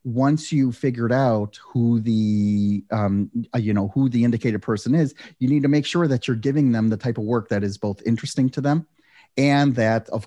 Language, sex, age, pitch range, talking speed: English, male, 30-49, 105-130 Hz, 210 wpm